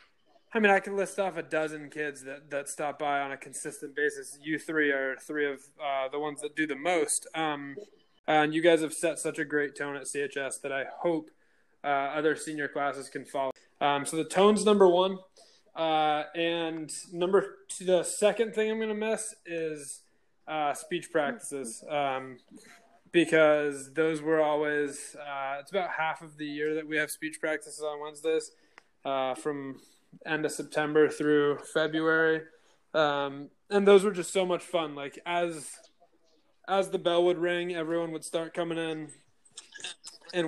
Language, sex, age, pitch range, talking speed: English, male, 20-39, 145-175 Hz, 175 wpm